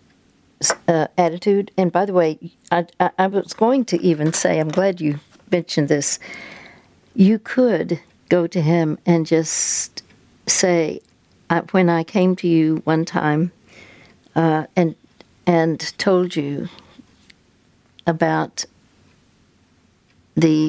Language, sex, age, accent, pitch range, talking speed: English, female, 60-79, American, 155-180 Hz, 120 wpm